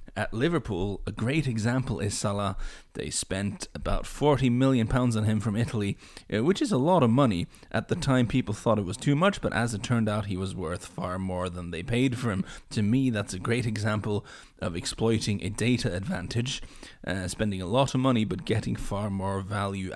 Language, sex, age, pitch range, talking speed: English, male, 30-49, 95-120 Hz, 205 wpm